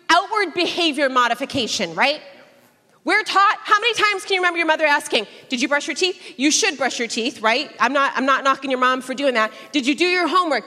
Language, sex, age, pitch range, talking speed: English, female, 30-49, 255-340 Hz, 230 wpm